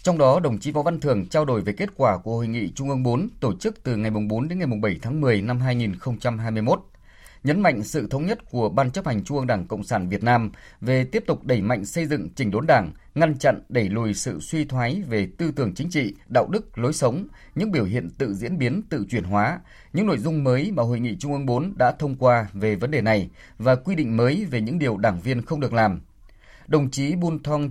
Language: Vietnamese